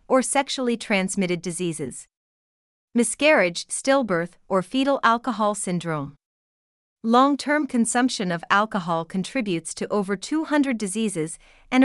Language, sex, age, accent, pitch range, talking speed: English, female, 40-59, American, 180-240 Hz, 100 wpm